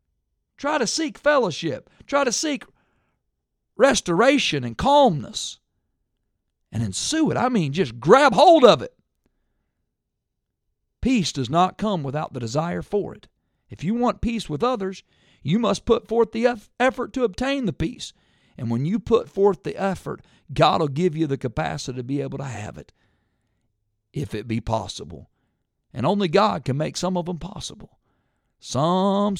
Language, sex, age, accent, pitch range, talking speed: English, male, 50-69, American, 110-180 Hz, 160 wpm